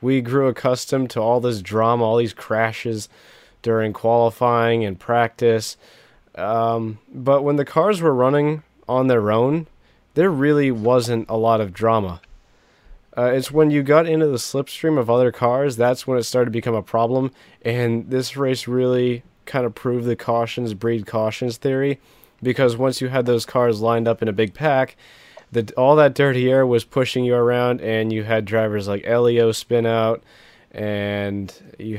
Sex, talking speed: male, 175 wpm